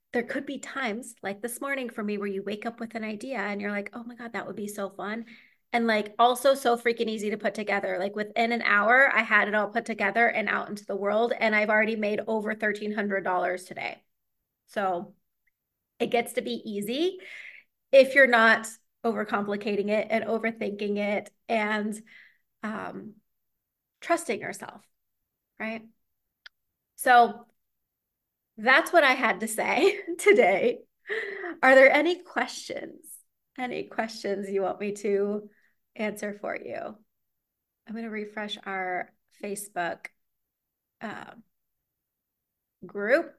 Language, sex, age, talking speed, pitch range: English, female, 30-49, 145 wpm, 205-250 Hz